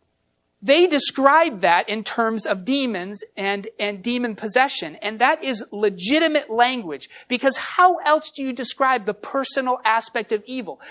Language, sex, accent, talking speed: English, male, American, 150 wpm